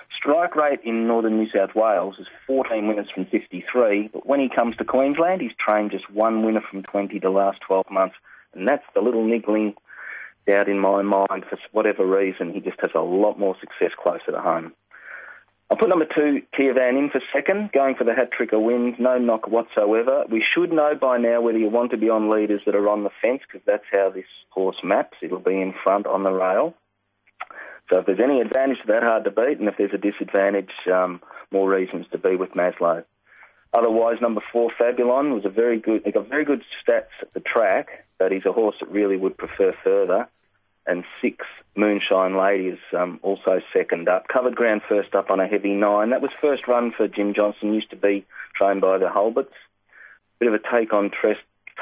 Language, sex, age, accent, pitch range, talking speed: English, male, 30-49, Australian, 100-120 Hz, 210 wpm